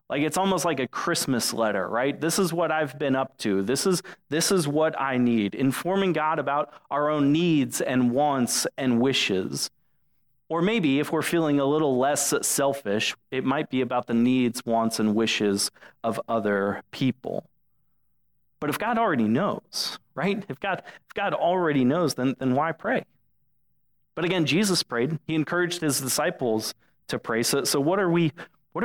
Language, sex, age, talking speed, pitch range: English, male, 30-49, 175 wpm, 125-165 Hz